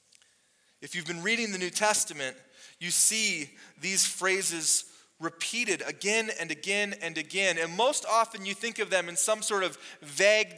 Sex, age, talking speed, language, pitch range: male, 30-49, 165 wpm, English, 135-195 Hz